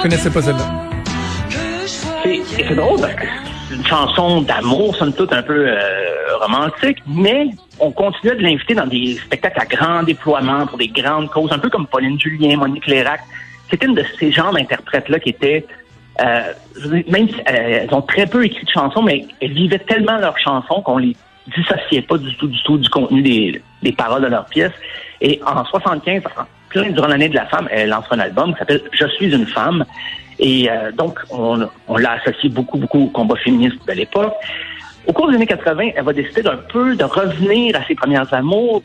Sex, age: male, 60-79